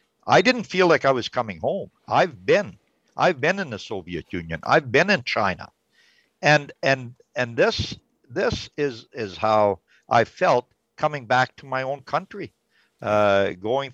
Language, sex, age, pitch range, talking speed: English, male, 60-79, 105-135 Hz, 165 wpm